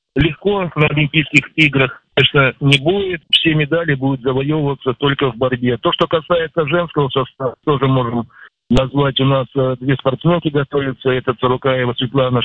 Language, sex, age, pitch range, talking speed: Russian, male, 50-69, 130-155 Hz, 145 wpm